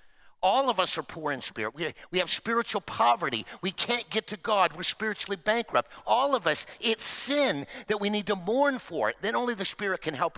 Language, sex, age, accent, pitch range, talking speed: English, male, 50-69, American, 165-225 Hz, 220 wpm